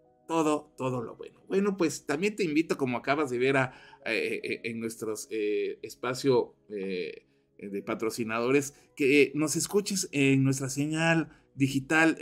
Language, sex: Spanish, male